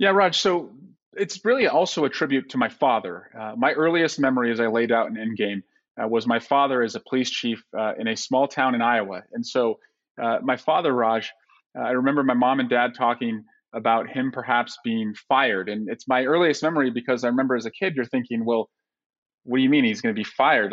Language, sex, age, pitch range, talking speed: English, male, 30-49, 120-145 Hz, 225 wpm